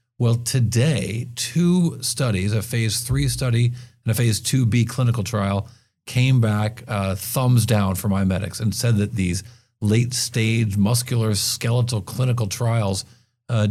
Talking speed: 130 wpm